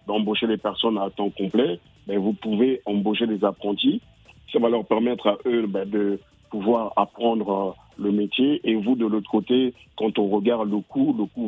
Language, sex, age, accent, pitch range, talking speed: French, male, 50-69, French, 105-120 Hz, 195 wpm